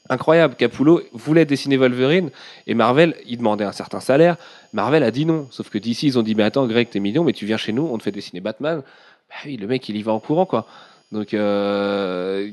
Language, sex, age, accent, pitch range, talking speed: French, male, 30-49, French, 110-145 Hz, 240 wpm